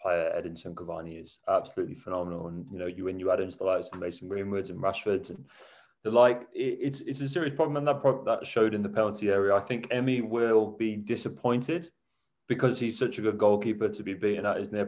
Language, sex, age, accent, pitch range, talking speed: English, male, 20-39, British, 105-120 Hz, 230 wpm